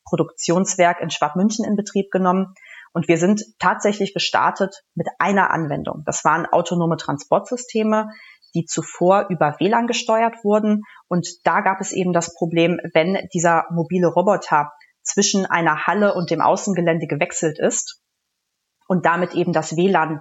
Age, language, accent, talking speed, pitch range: 30-49, German, German, 145 wpm, 170-195 Hz